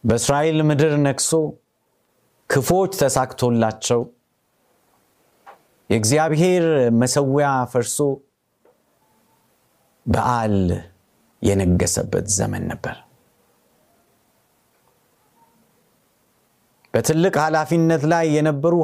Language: Amharic